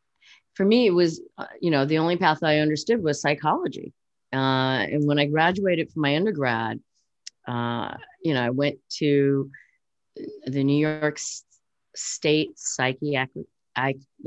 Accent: American